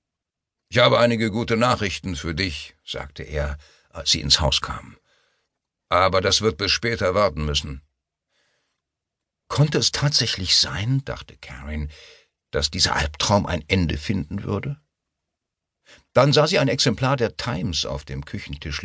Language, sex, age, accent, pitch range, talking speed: German, male, 60-79, German, 75-115 Hz, 140 wpm